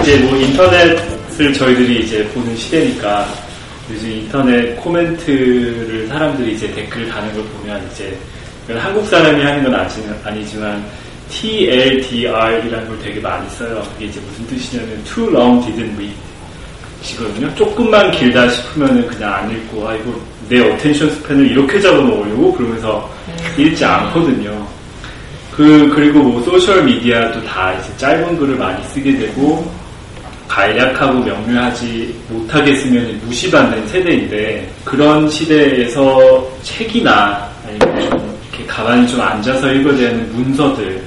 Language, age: Korean, 30-49